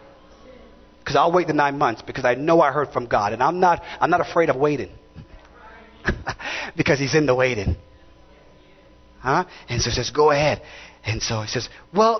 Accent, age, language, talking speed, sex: American, 30-49, English, 180 wpm, male